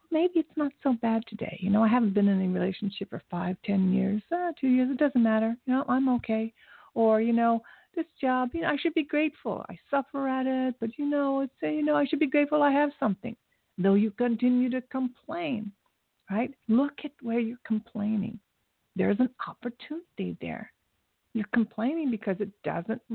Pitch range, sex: 205-265 Hz, female